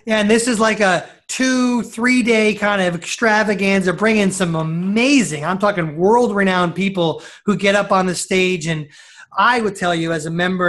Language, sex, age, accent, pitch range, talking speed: English, male, 30-49, American, 170-210 Hz, 190 wpm